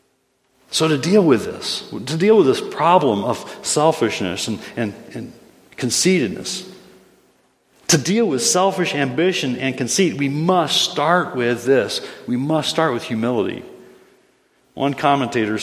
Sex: male